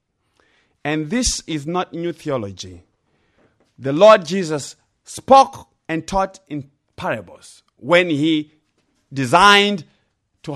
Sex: male